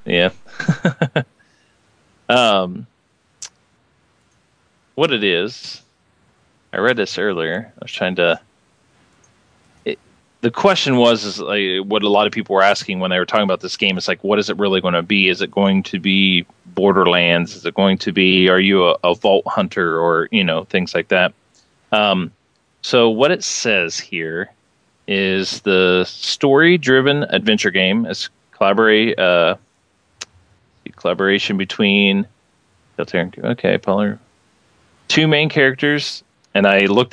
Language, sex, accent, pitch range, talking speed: English, male, American, 95-115 Hz, 145 wpm